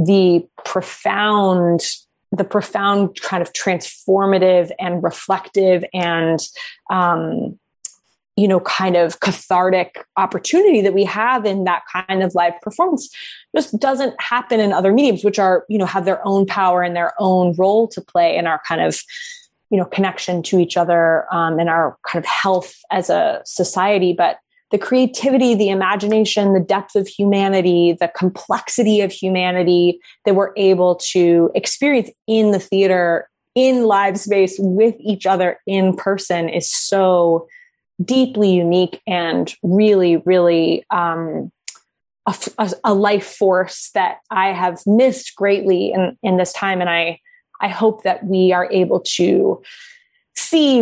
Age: 20-39